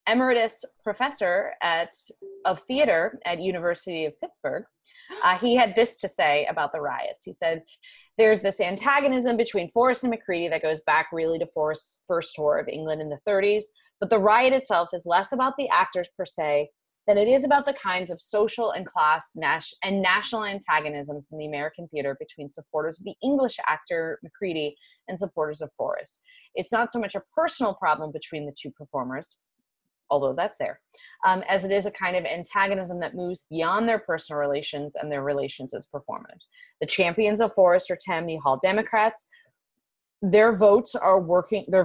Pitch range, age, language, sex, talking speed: 155-220 Hz, 30-49, English, female, 180 wpm